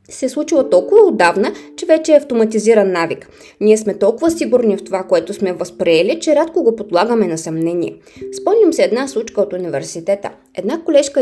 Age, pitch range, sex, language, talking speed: 20-39, 195-250 Hz, female, Bulgarian, 175 wpm